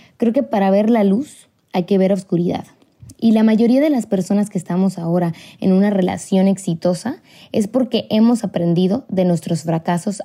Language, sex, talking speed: Spanish, female, 175 wpm